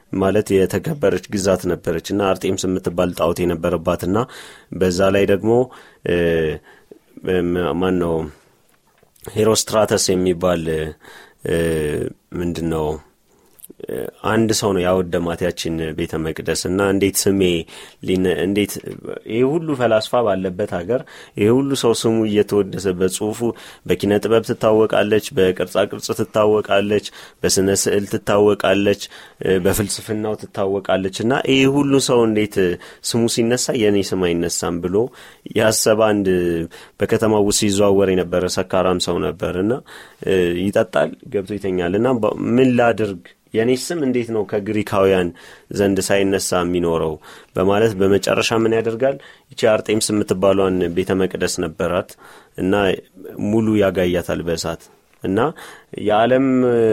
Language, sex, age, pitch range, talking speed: Amharic, male, 30-49, 90-110 Hz, 95 wpm